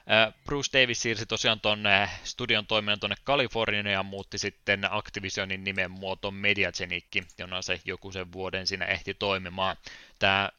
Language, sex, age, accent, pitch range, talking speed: Finnish, male, 20-39, native, 95-110 Hz, 140 wpm